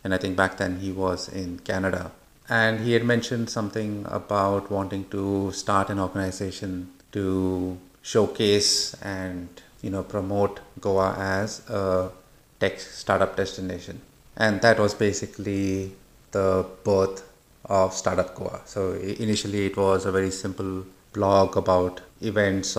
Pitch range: 95-110 Hz